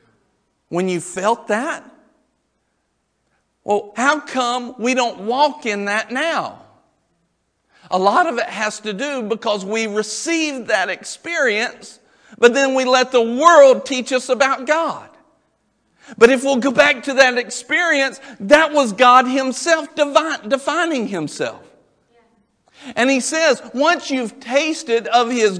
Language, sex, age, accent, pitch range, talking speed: English, male, 50-69, American, 225-300 Hz, 135 wpm